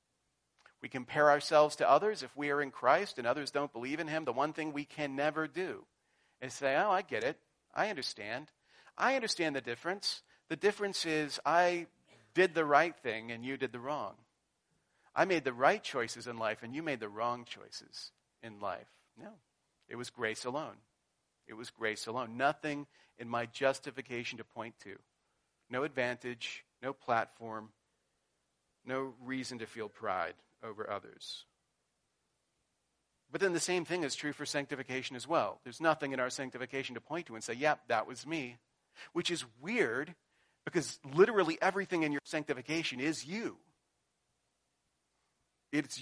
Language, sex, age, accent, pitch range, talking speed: English, male, 40-59, American, 120-155 Hz, 165 wpm